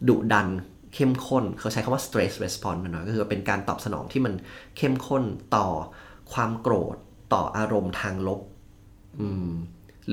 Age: 30-49